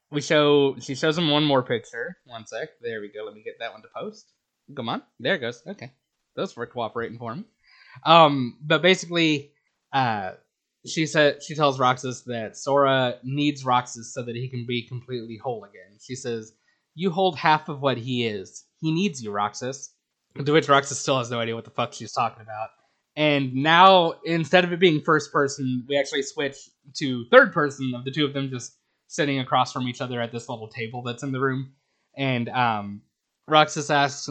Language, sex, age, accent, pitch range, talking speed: English, male, 20-39, American, 125-155 Hz, 200 wpm